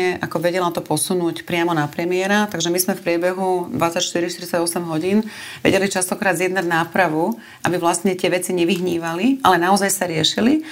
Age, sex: 30-49, female